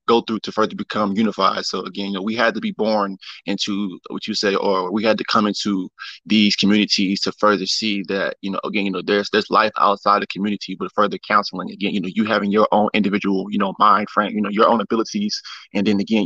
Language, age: English, 20-39